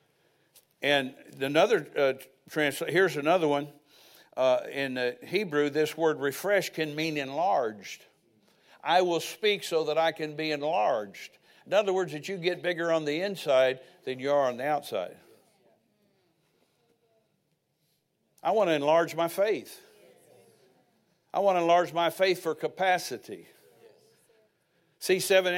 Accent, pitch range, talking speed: American, 145-180 Hz, 135 wpm